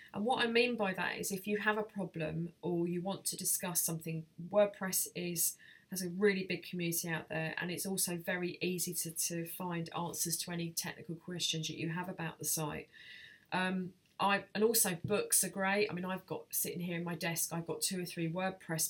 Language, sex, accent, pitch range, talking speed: English, female, British, 165-190 Hz, 215 wpm